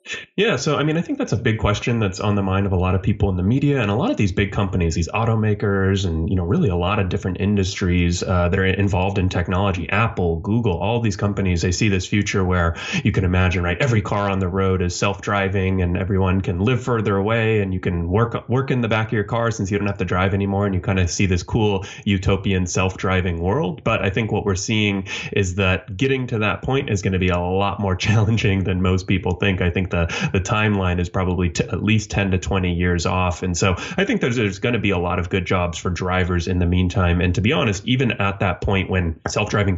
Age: 20-39